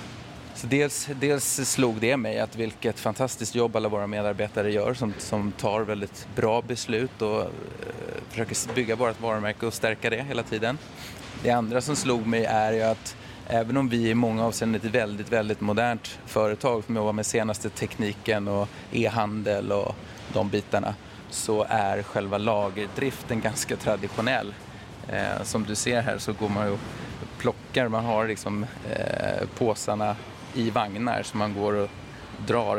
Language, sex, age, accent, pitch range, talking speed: Swedish, male, 30-49, native, 105-120 Hz, 150 wpm